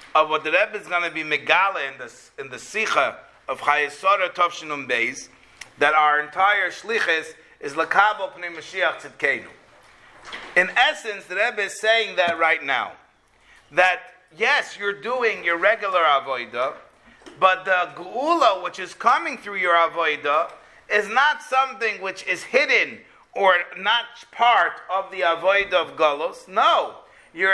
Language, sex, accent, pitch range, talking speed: English, male, American, 165-250 Hz, 145 wpm